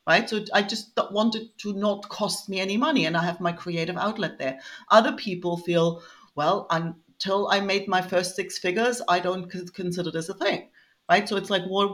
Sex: female